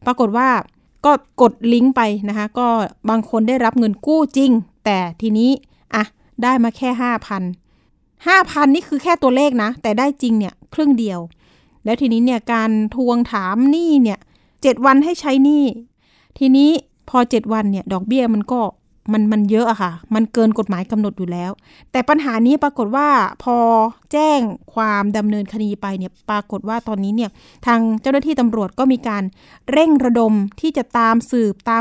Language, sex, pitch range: Thai, female, 215-260 Hz